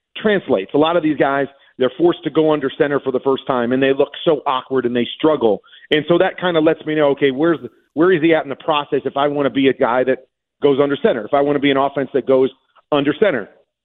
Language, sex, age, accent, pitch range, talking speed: English, male, 40-59, American, 140-185 Hz, 275 wpm